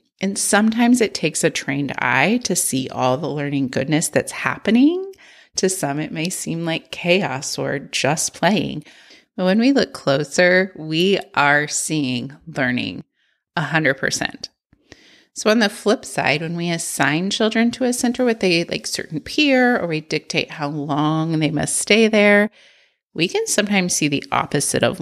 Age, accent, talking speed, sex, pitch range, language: 30-49, American, 160 wpm, female, 150-220 Hz, English